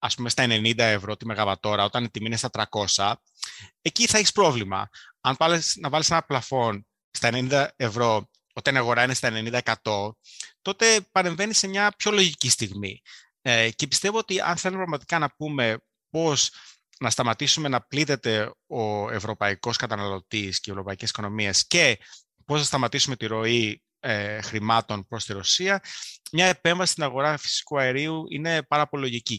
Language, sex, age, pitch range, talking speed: Greek, male, 30-49, 110-155 Hz, 165 wpm